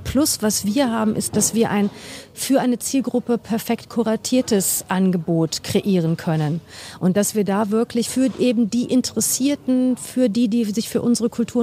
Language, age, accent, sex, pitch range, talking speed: German, 50-69, German, female, 200-230 Hz, 165 wpm